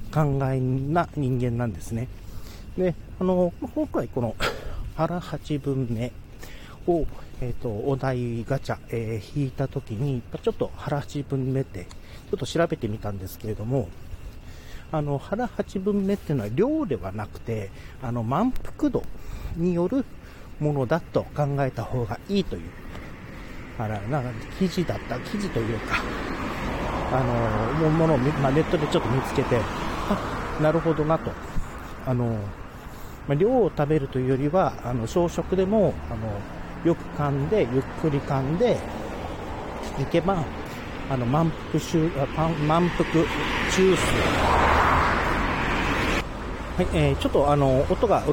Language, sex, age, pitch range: Japanese, male, 40-59, 115-160 Hz